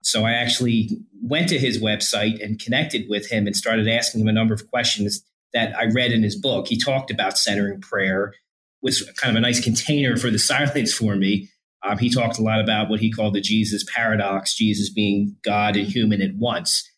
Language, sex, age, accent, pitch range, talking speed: English, male, 30-49, American, 105-130 Hz, 215 wpm